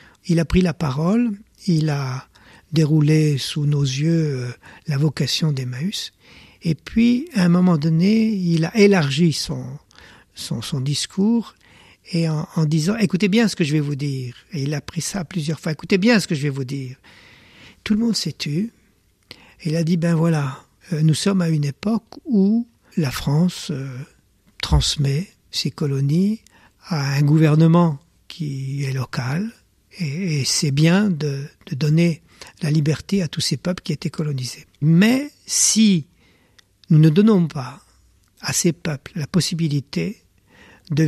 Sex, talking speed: male, 170 wpm